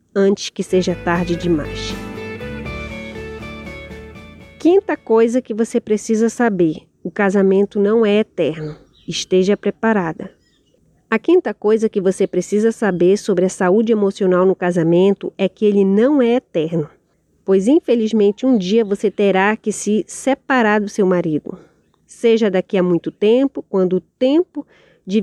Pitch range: 180-225 Hz